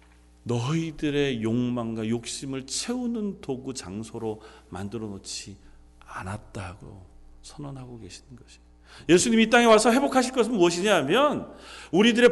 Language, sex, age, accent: Korean, male, 40-59, native